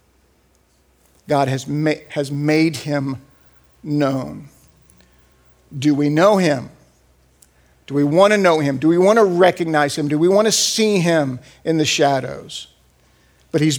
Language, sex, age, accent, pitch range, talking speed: English, male, 50-69, American, 125-170 Hz, 145 wpm